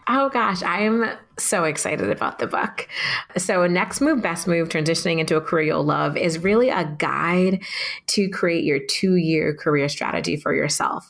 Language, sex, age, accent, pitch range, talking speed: English, female, 30-49, American, 150-180 Hz, 175 wpm